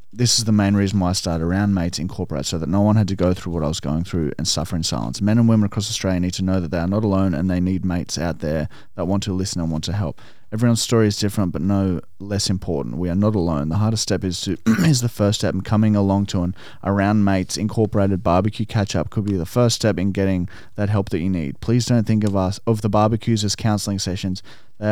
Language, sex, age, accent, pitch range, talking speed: English, male, 20-39, Australian, 90-110 Hz, 265 wpm